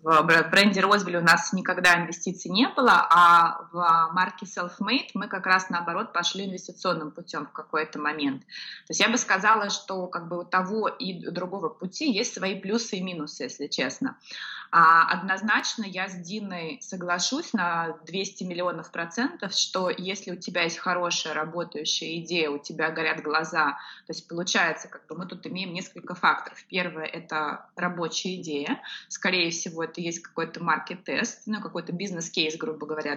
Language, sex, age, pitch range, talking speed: Russian, female, 20-39, 170-210 Hz, 160 wpm